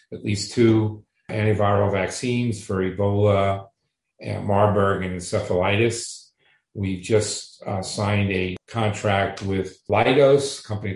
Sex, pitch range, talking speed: male, 95-110 Hz, 115 wpm